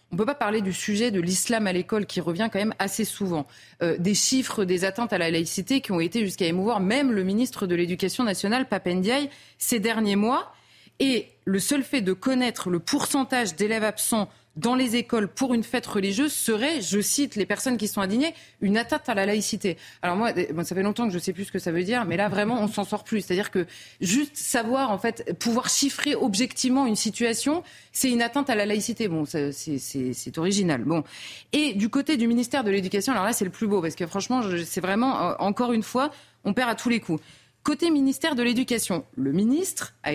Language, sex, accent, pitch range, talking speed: French, female, French, 185-250 Hz, 225 wpm